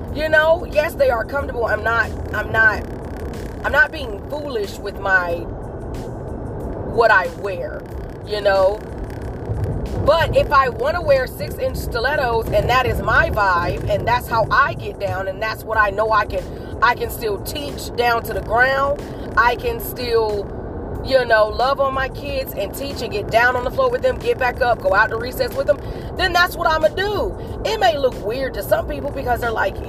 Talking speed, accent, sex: 200 wpm, American, female